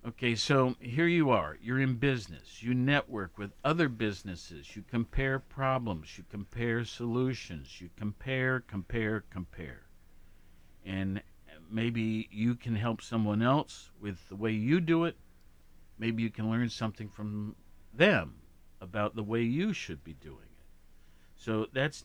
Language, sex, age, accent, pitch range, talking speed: English, male, 50-69, American, 85-125 Hz, 145 wpm